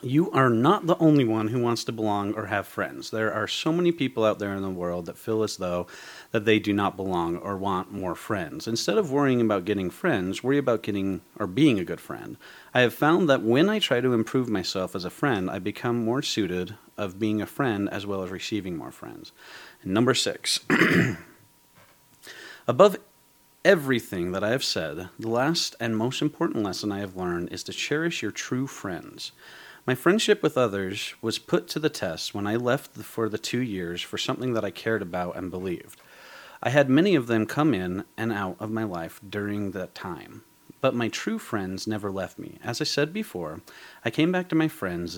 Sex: male